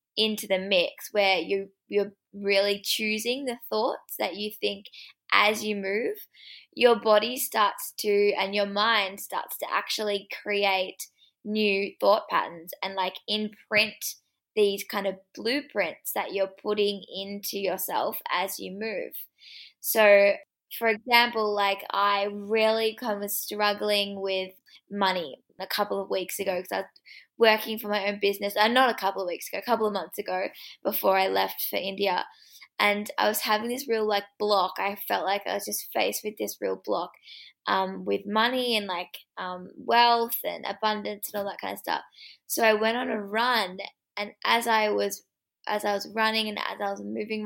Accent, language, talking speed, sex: Australian, English, 175 wpm, female